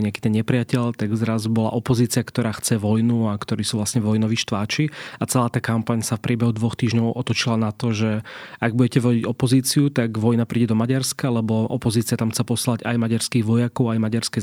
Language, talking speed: Slovak, 200 wpm